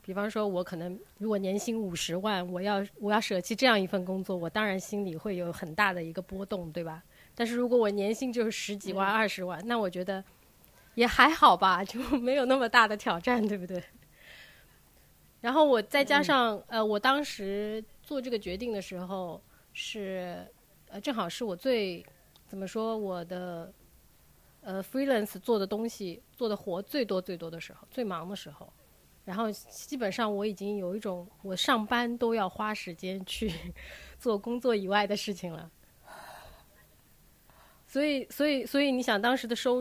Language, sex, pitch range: Chinese, female, 180-230 Hz